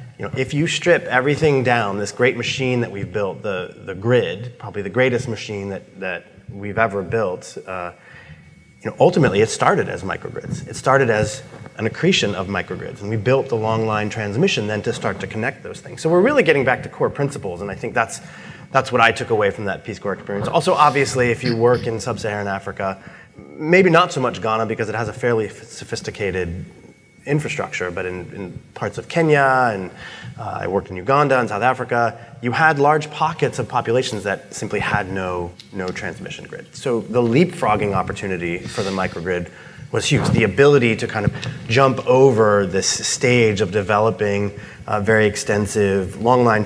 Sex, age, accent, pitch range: male, 30-49, American, 100-130 Hz